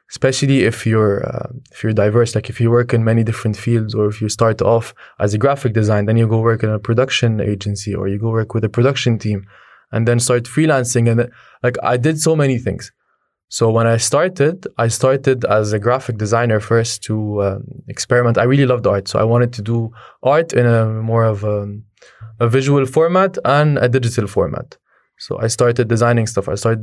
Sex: male